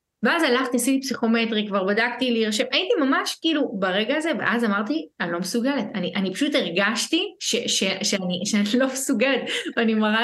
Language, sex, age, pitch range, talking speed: Hebrew, female, 20-39, 190-250 Hz, 175 wpm